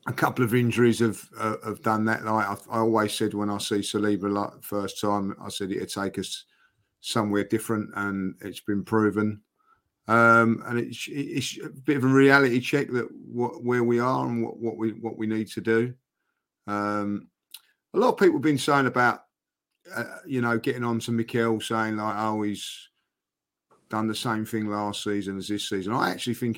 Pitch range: 100-115 Hz